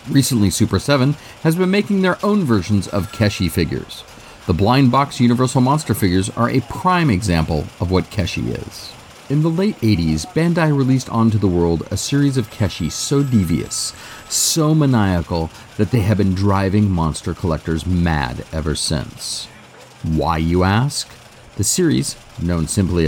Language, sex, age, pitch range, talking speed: English, male, 40-59, 90-135 Hz, 155 wpm